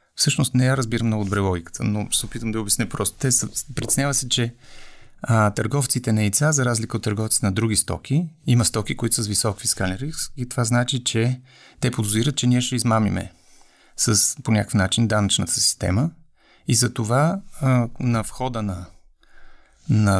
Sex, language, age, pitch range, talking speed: male, Bulgarian, 30-49, 105-125 Hz, 180 wpm